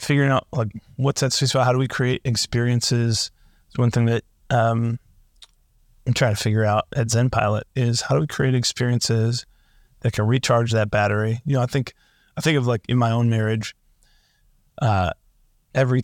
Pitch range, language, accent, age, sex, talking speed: 110-130 Hz, English, American, 30-49, male, 185 wpm